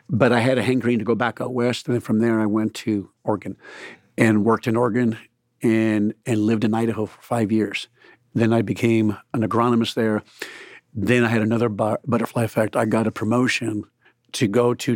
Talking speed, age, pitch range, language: 195 wpm, 50-69, 110-130 Hz, English